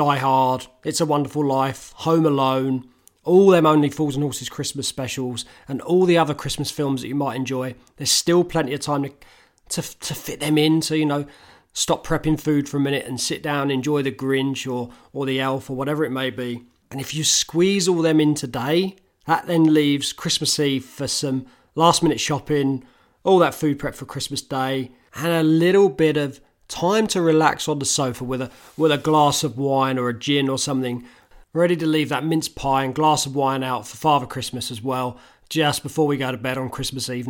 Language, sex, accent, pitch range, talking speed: English, male, British, 130-155 Hz, 215 wpm